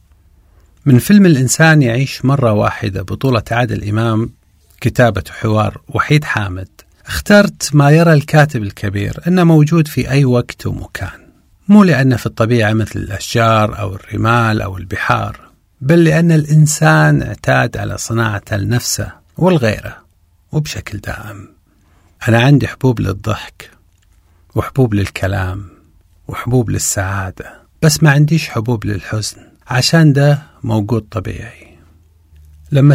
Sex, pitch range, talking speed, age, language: male, 95-145 Hz, 115 wpm, 40-59, Arabic